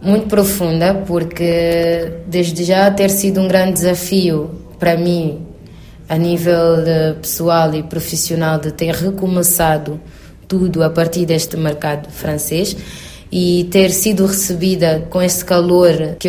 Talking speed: 125 wpm